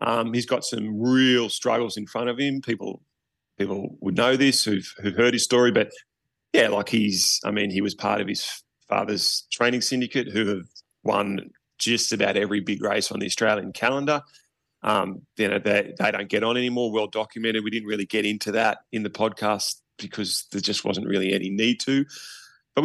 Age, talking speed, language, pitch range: 30-49, 195 wpm, English, 100-120 Hz